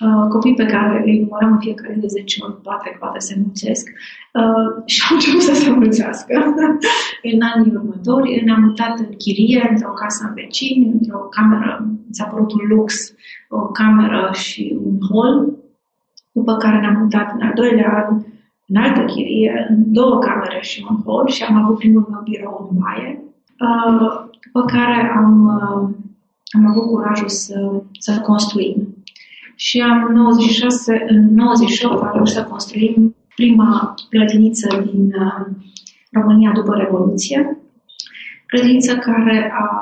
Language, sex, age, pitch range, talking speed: Romanian, female, 20-39, 210-235 Hz, 150 wpm